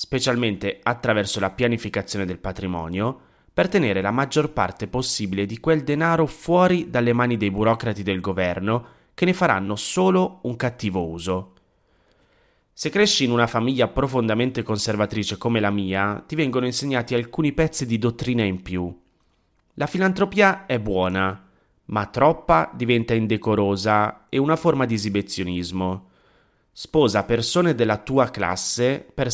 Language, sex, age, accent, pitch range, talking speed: Italian, male, 30-49, native, 100-135 Hz, 135 wpm